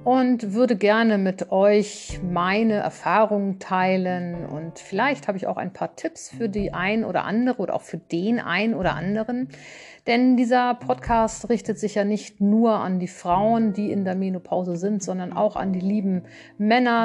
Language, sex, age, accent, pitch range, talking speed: German, female, 50-69, German, 180-225 Hz, 175 wpm